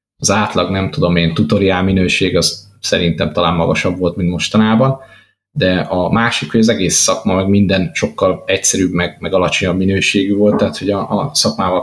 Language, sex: Hungarian, male